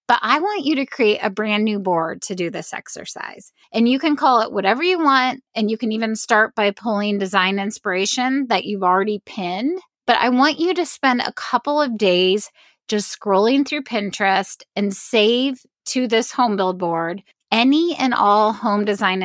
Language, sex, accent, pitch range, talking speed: English, female, American, 200-260 Hz, 190 wpm